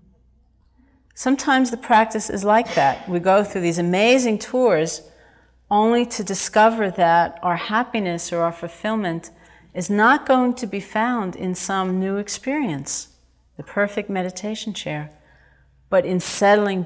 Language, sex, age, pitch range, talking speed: English, female, 50-69, 150-195 Hz, 135 wpm